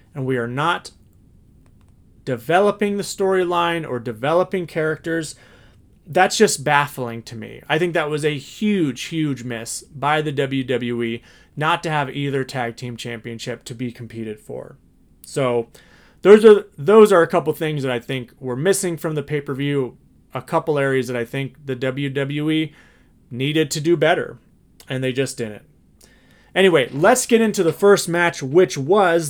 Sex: male